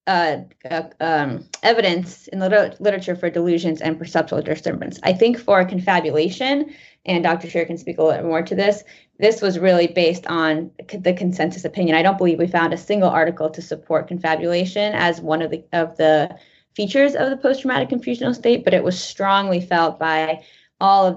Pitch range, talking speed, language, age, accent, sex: 160-185 Hz, 190 wpm, English, 20-39, American, female